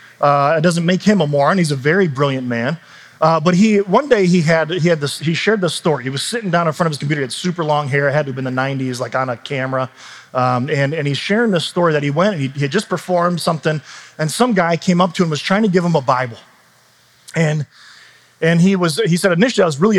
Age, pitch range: 30-49, 145-190 Hz